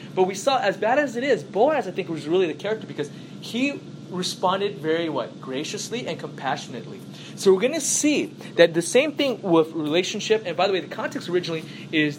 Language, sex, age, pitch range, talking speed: English, male, 20-39, 160-220 Hz, 205 wpm